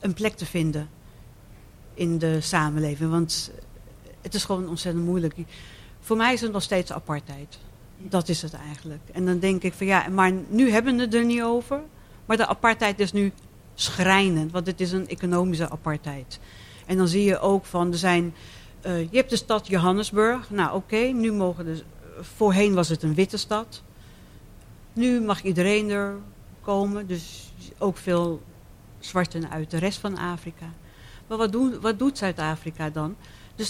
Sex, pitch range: female, 160-205 Hz